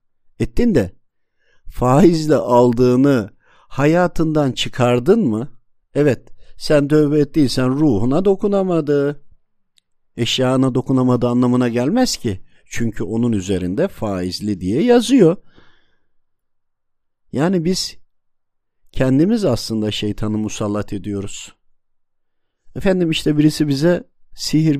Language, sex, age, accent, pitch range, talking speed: Turkish, male, 50-69, native, 110-145 Hz, 85 wpm